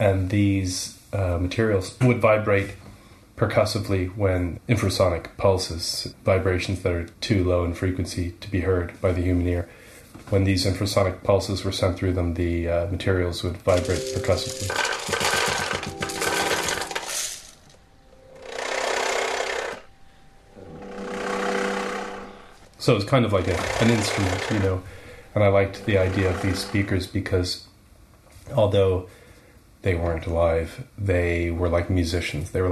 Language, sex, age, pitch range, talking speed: English, male, 30-49, 90-105 Hz, 125 wpm